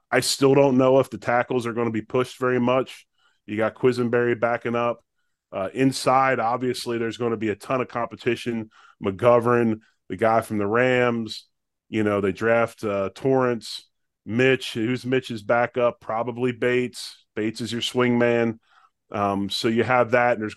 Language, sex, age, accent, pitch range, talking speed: English, male, 30-49, American, 105-120 Hz, 175 wpm